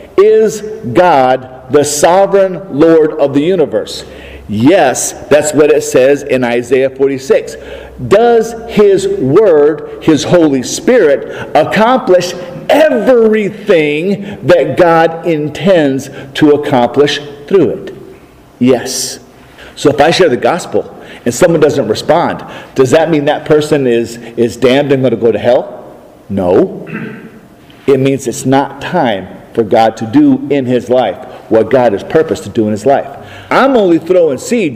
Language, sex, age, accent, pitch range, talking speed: English, male, 50-69, American, 140-220 Hz, 140 wpm